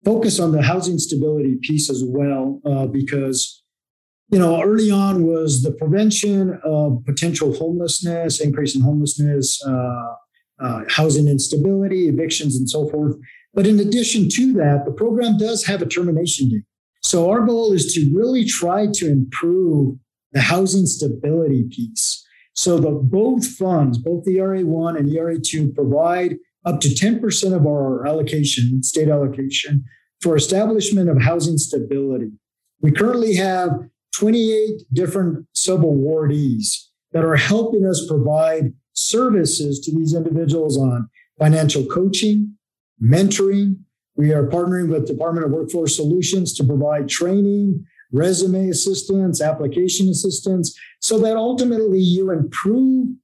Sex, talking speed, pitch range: male, 135 wpm, 145-190 Hz